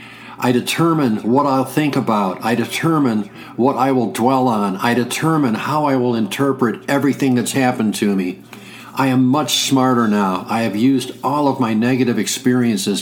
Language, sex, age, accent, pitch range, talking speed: English, male, 60-79, American, 115-130 Hz, 170 wpm